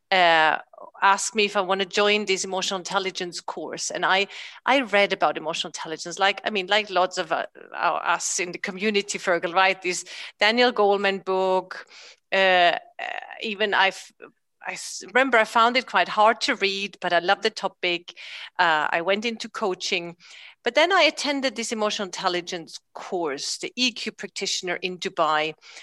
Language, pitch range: English, 185-230 Hz